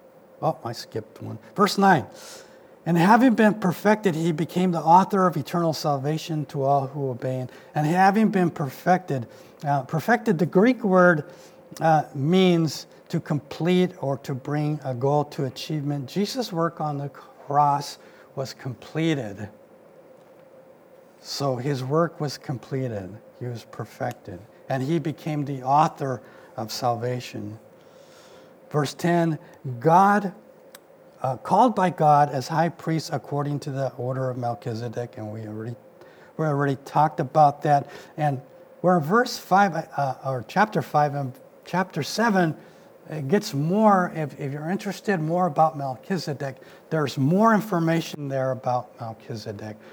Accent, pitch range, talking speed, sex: American, 135-180 Hz, 135 wpm, male